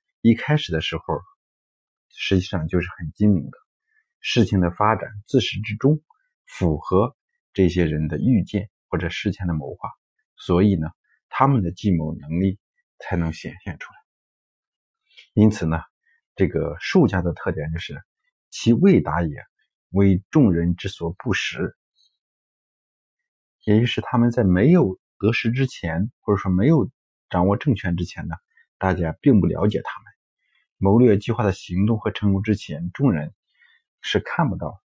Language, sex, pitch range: Chinese, male, 90-115 Hz